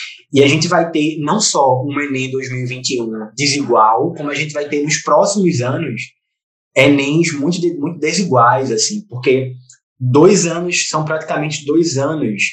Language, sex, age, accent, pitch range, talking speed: Portuguese, male, 20-39, Brazilian, 125-150 Hz, 155 wpm